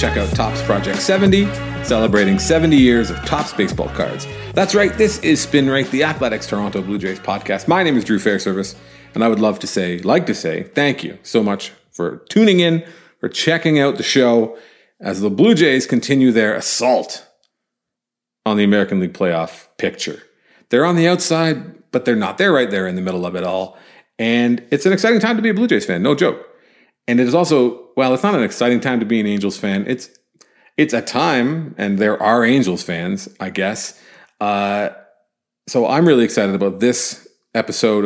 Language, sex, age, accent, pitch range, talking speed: English, male, 40-59, American, 100-140 Hz, 200 wpm